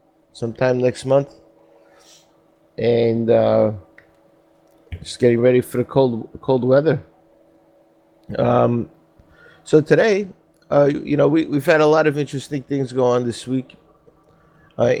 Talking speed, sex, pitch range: 125 wpm, male, 120-140 Hz